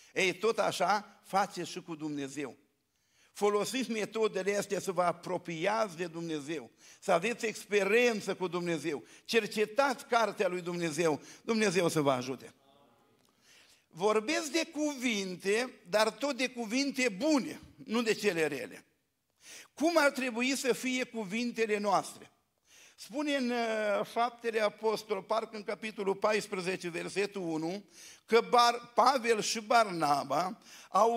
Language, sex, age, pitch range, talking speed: Romanian, male, 50-69, 190-245 Hz, 125 wpm